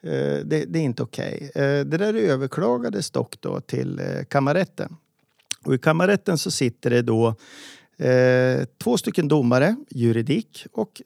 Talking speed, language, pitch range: 135 wpm, Swedish, 110-155 Hz